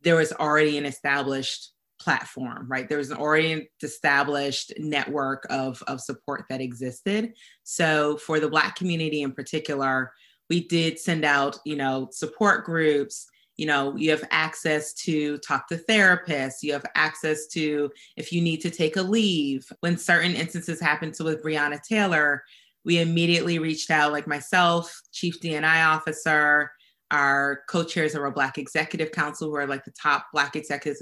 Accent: American